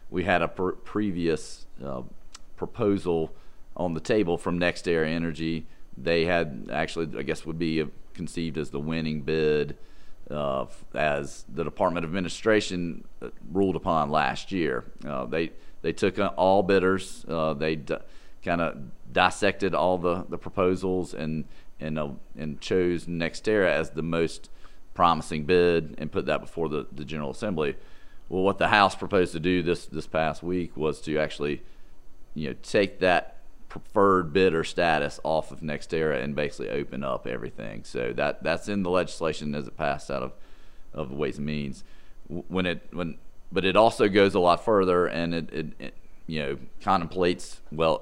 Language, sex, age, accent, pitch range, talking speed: English, male, 40-59, American, 75-90 Hz, 165 wpm